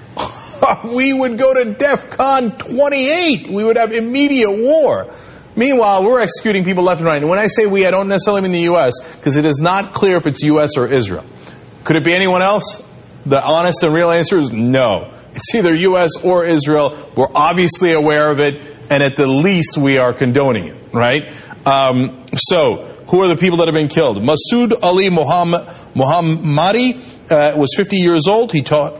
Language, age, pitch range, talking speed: English, 40-59, 145-195 Hz, 185 wpm